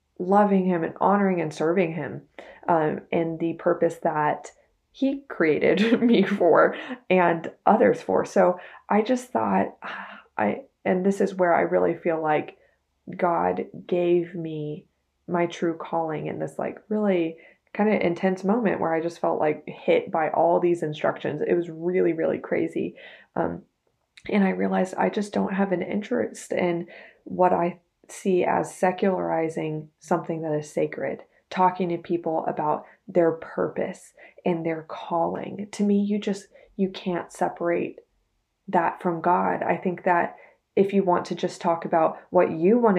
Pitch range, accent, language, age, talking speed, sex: 160-190 Hz, American, English, 20-39, 160 wpm, female